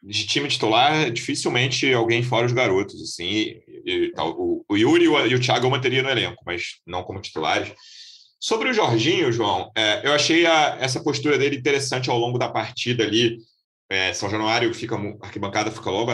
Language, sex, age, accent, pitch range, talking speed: Portuguese, male, 30-49, Brazilian, 115-175 Hz, 195 wpm